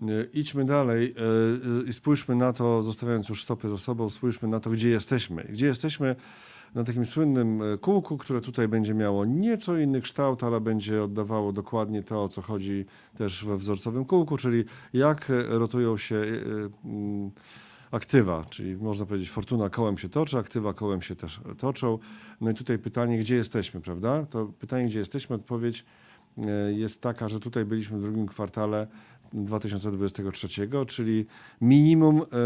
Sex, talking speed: male, 150 wpm